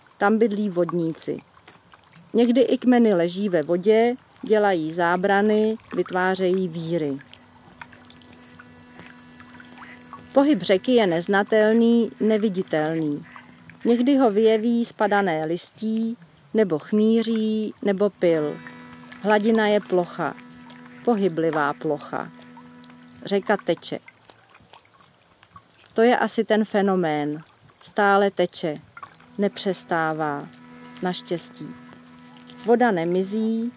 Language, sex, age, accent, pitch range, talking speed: Czech, female, 40-59, native, 160-220 Hz, 80 wpm